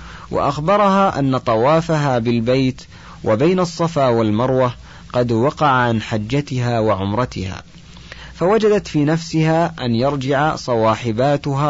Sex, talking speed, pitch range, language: male, 90 wpm, 110-150 Hz, Arabic